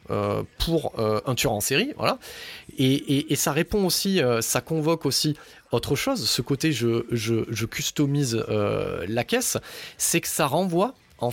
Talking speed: 180 wpm